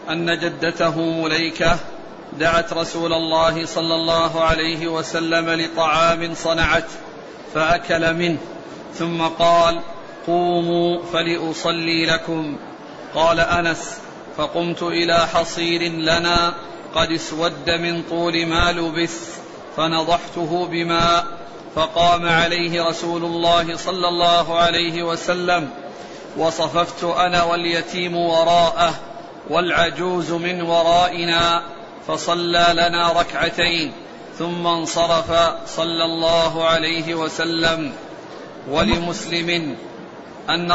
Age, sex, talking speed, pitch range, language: 40-59, male, 90 wpm, 165-170 Hz, Arabic